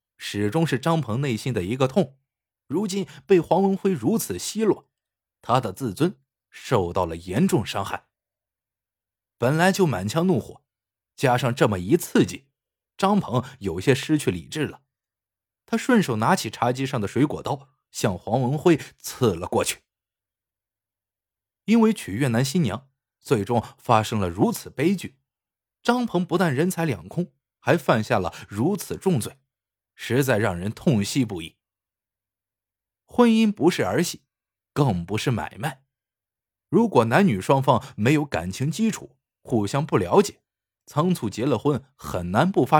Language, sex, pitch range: Chinese, male, 105-165 Hz